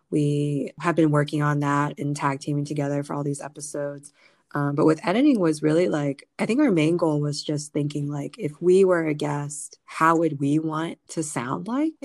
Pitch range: 145-170 Hz